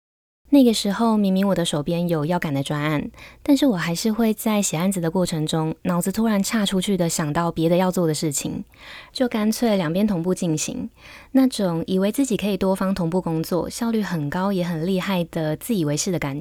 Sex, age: female, 20-39